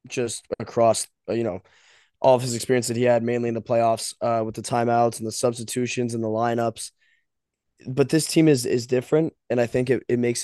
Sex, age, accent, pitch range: male, 20-39, American, 115-125 Hz